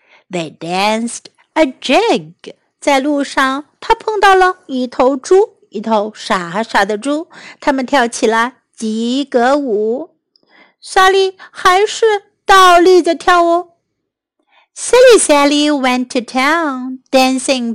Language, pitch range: Chinese, 240-355 Hz